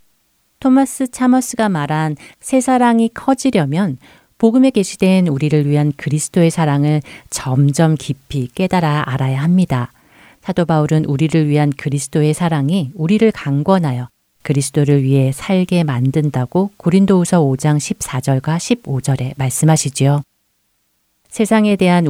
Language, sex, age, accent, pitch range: Korean, female, 40-59, native, 140-185 Hz